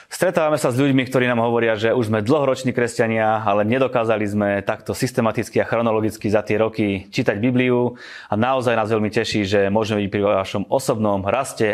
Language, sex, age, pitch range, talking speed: Slovak, male, 20-39, 105-125 Hz, 185 wpm